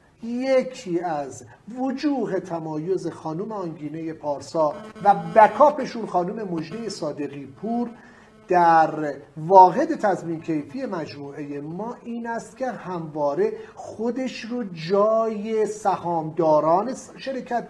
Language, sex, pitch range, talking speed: English, male, 180-260 Hz, 100 wpm